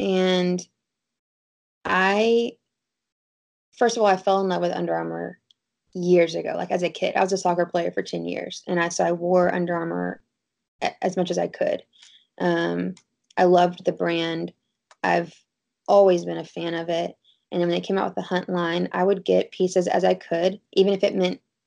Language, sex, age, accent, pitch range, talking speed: English, female, 20-39, American, 170-190 Hz, 195 wpm